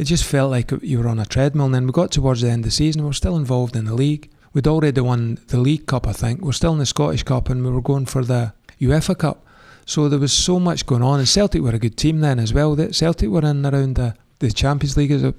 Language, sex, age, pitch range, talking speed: English, male, 30-49, 120-145 Hz, 285 wpm